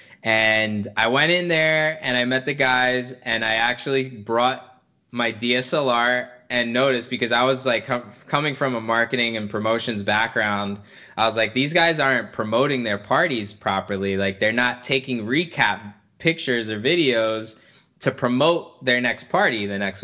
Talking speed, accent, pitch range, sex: 160 wpm, American, 110-135 Hz, male